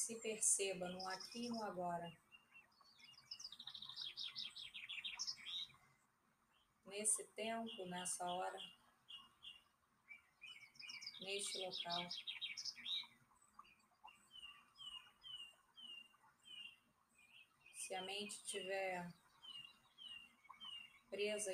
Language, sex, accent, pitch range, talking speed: Portuguese, female, Brazilian, 185-215 Hz, 50 wpm